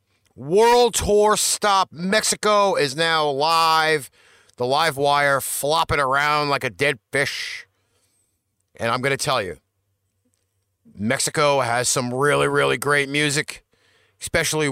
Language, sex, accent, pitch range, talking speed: English, male, American, 105-165 Hz, 120 wpm